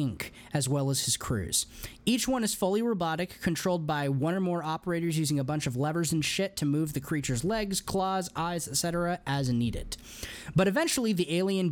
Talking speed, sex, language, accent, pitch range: 190 wpm, male, English, American, 130-180 Hz